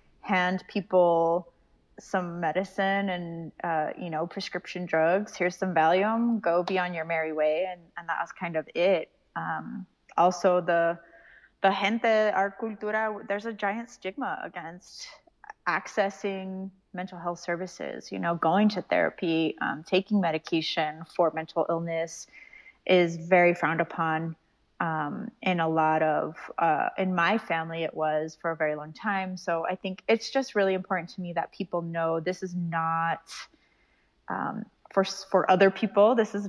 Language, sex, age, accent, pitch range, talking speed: English, female, 20-39, American, 165-200 Hz, 155 wpm